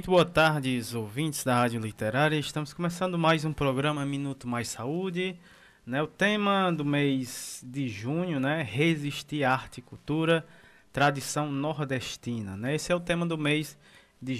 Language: Portuguese